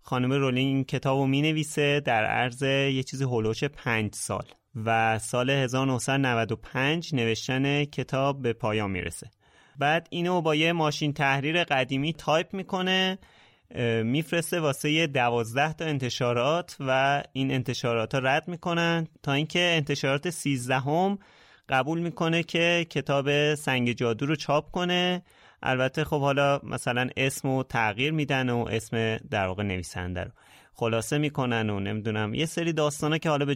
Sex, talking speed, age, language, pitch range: male, 145 wpm, 30-49, Persian, 115-150 Hz